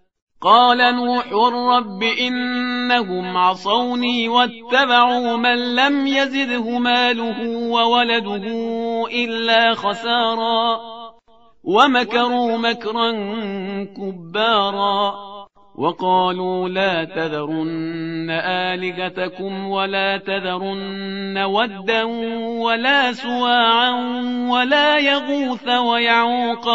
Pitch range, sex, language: 200-245 Hz, male, Persian